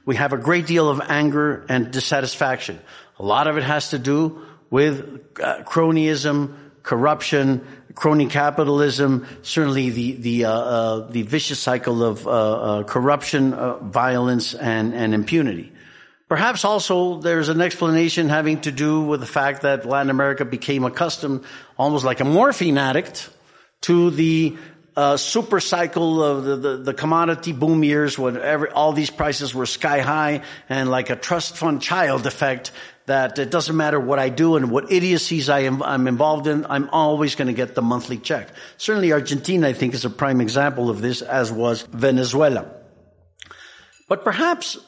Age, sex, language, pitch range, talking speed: 60-79, male, English, 125-155 Hz, 160 wpm